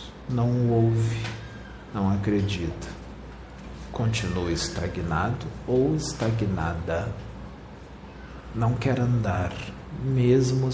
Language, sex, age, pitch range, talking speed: Portuguese, male, 50-69, 95-125 Hz, 65 wpm